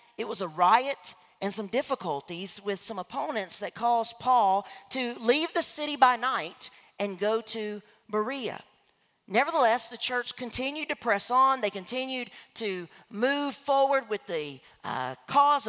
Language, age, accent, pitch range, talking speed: English, 40-59, American, 200-265 Hz, 150 wpm